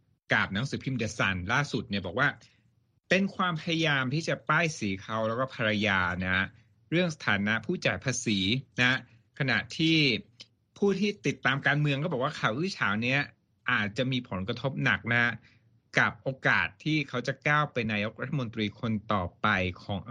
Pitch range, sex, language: 110-145 Hz, male, Thai